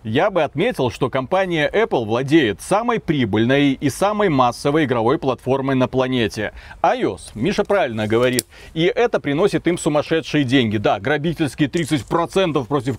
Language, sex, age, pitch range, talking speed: Russian, male, 30-49, 130-180 Hz, 140 wpm